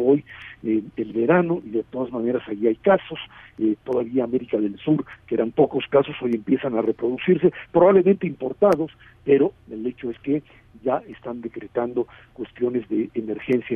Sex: male